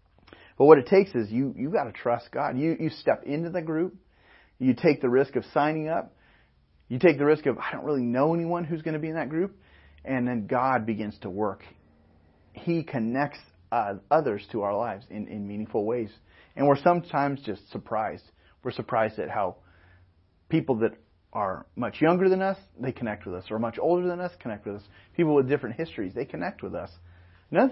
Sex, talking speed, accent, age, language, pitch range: male, 205 wpm, American, 30-49, English, 100-145 Hz